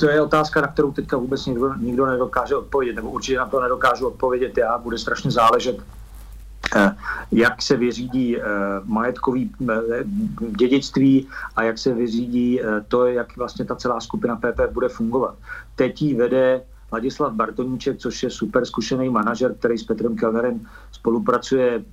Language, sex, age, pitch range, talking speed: Slovak, male, 40-59, 115-140 Hz, 140 wpm